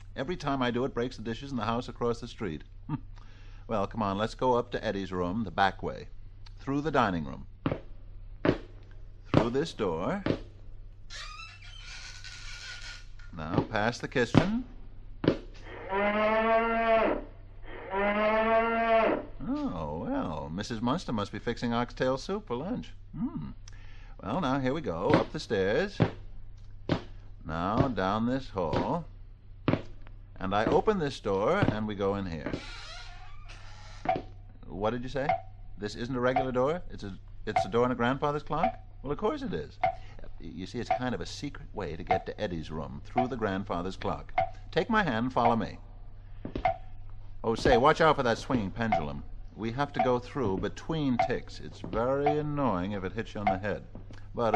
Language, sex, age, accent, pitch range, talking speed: English, male, 60-79, American, 95-125 Hz, 155 wpm